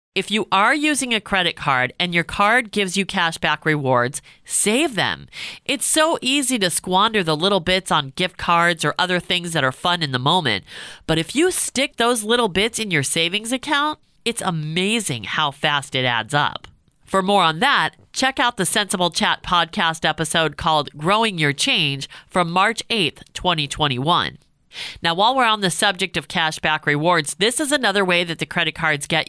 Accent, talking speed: American, 190 wpm